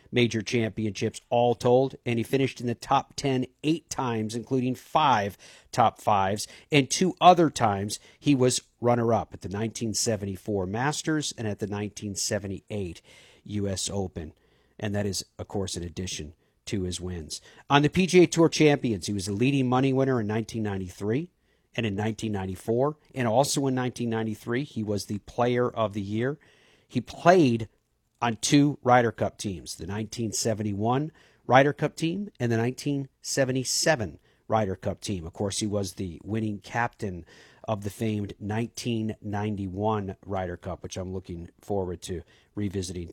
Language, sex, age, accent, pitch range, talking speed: English, male, 50-69, American, 100-130 Hz, 150 wpm